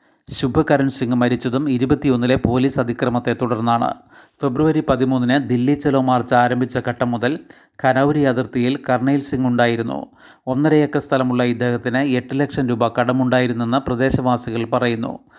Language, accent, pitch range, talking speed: Malayalam, native, 125-135 Hz, 110 wpm